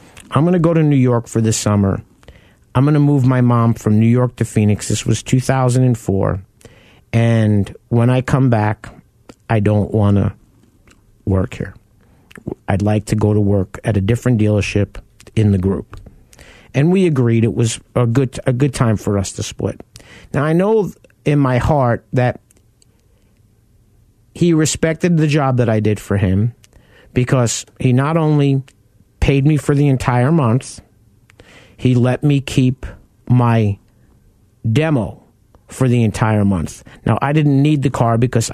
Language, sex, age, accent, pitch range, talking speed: English, male, 50-69, American, 110-130 Hz, 160 wpm